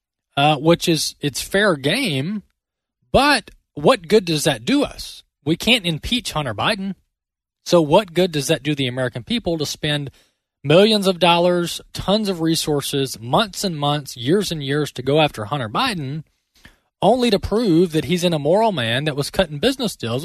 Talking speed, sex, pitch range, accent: 175 wpm, male, 125-170 Hz, American